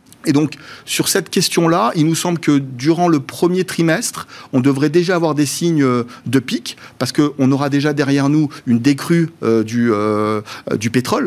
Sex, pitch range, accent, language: male, 125-160 Hz, French, French